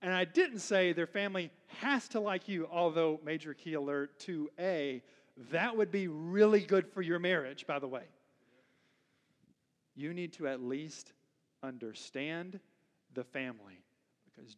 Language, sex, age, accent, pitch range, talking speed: English, male, 40-59, American, 135-190 Hz, 145 wpm